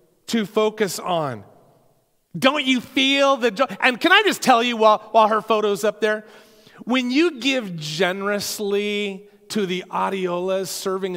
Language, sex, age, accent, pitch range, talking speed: English, male, 30-49, American, 165-230 Hz, 150 wpm